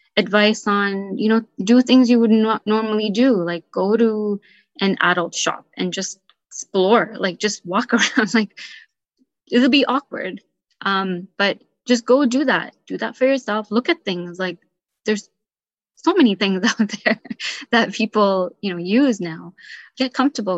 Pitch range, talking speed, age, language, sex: 190-230 Hz, 165 wpm, 20-39, English, female